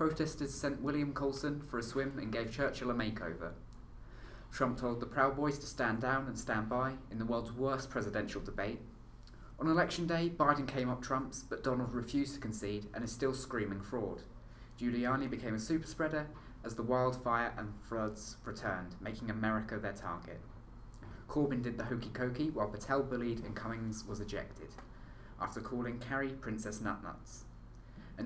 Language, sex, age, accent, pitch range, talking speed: English, male, 20-39, British, 110-135 Hz, 165 wpm